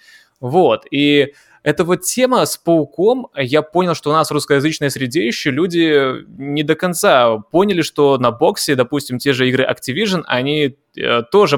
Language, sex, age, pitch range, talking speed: Russian, male, 20-39, 130-170 Hz, 160 wpm